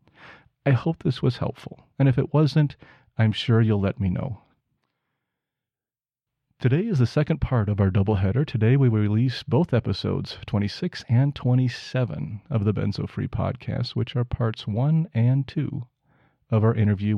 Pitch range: 110-140 Hz